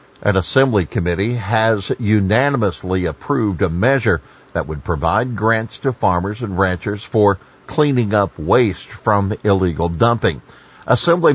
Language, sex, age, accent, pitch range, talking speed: English, male, 50-69, American, 90-115 Hz, 125 wpm